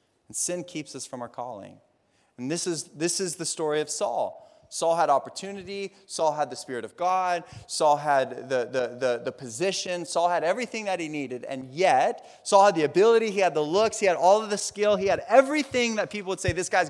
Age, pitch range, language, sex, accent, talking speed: 30-49, 140-200 Hz, English, male, American, 220 wpm